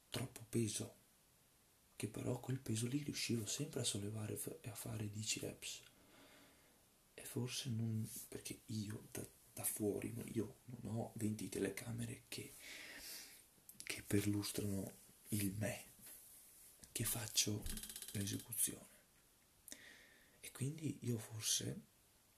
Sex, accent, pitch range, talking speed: male, native, 105-120 Hz, 110 wpm